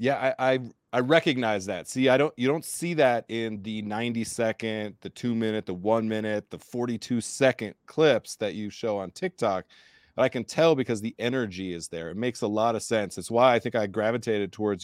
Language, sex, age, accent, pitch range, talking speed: English, male, 30-49, American, 100-120 Hz, 220 wpm